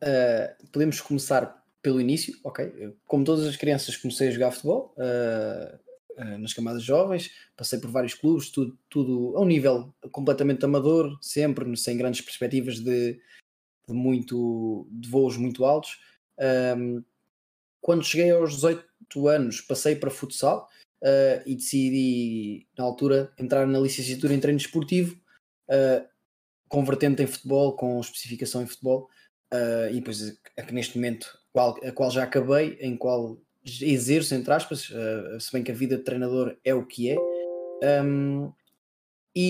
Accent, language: Portuguese, Portuguese